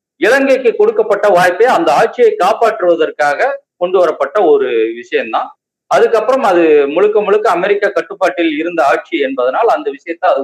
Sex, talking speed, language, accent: male, 125 wpm, Tamil, native